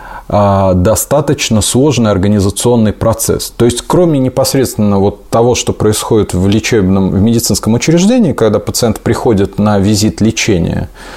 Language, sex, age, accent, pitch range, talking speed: Russian, male, 30-49, native, 100-125 Hz, 115 wpm